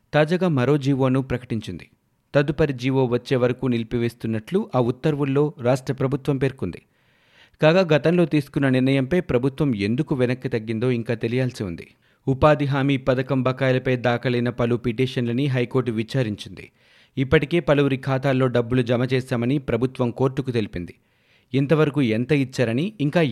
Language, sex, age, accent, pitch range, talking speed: Telugu, male, 30-49, native, 120-145 Hz, 120 wpm